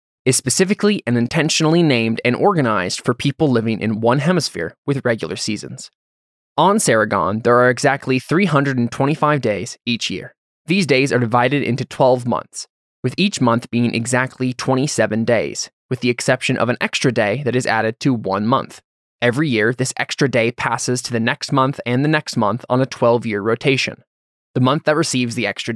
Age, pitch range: 20-39, 115-140 Hz